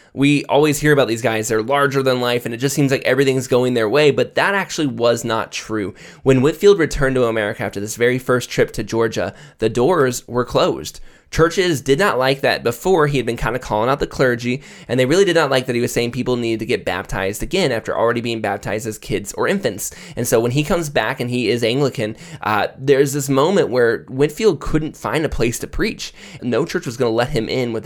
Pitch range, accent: 115-140 Hz, American